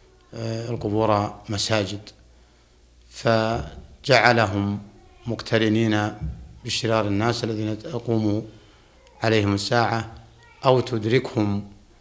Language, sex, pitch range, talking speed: Arabic, male, 105-115 Hz, 60 wpm